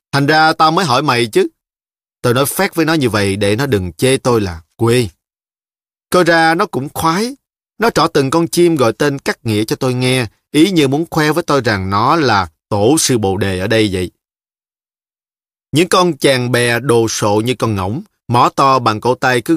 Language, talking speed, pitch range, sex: Vietnamese, 210 wpm, 110-150 Hz, male